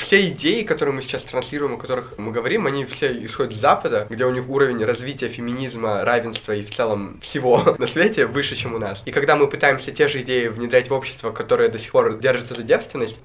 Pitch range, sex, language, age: 105-130 Hz, male, Russian, 20-39